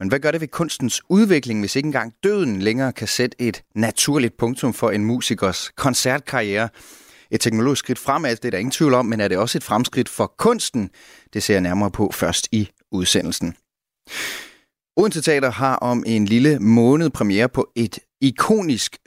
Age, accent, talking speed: 30-49, native, 185 wpm